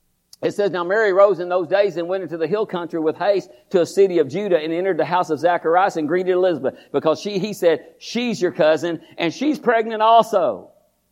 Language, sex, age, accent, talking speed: English, male, 50-69, American, 220 wpm